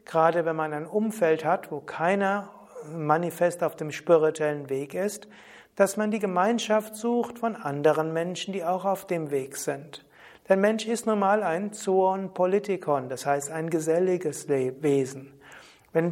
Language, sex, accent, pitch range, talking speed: German, male, German, 155-200 Hz, 155 wpm